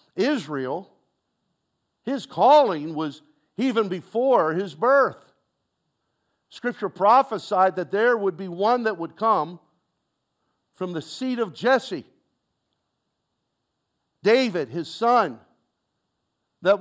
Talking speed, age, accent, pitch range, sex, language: 95 wpm, 50-69, American, 175-245 Hz, male, English